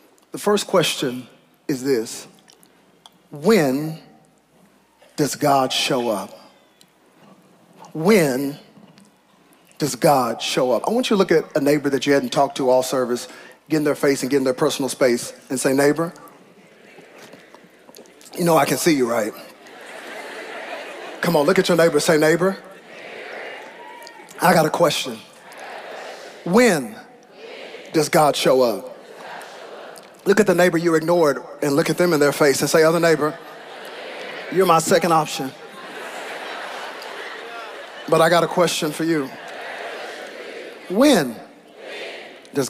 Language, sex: English, male